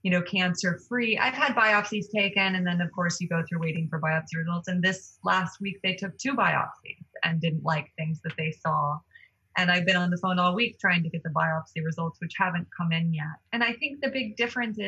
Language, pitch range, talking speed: English, 160-195 Hz, 240 wpm